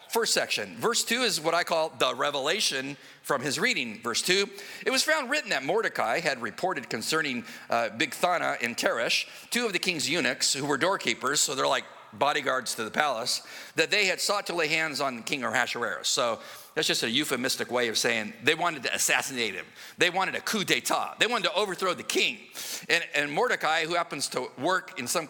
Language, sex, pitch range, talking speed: English, male, 145-190 Hz, 200 wpm